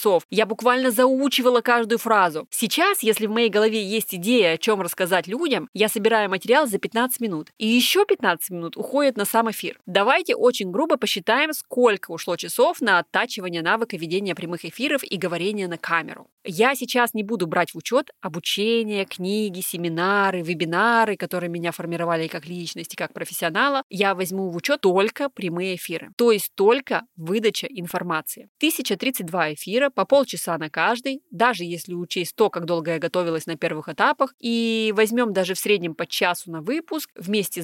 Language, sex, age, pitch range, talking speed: Russian, female, 20-39, 180-250 Hz, 165 wpm